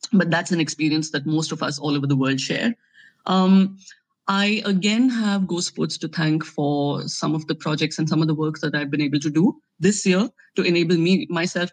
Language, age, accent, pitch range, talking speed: English, 30-49, Indian, 155-185 Hz, 220 wpm